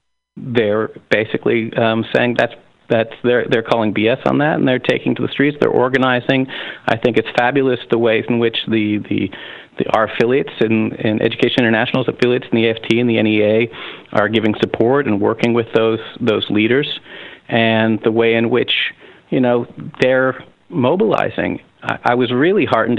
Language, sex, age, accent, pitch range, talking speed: English, male, 40-59, American, 110-130 Hz, 175 wpm